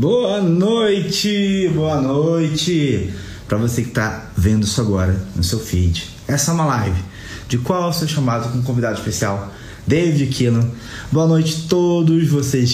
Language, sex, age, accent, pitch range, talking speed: Portuguese, male, 20-39, Brazilian, 110-145 Hz, 160 wpm